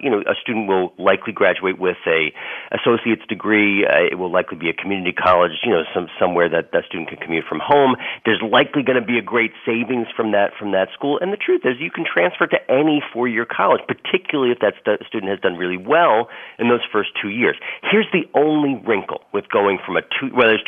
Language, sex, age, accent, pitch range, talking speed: English, male, 40-59, American, 95-150 Hz, 230 wpm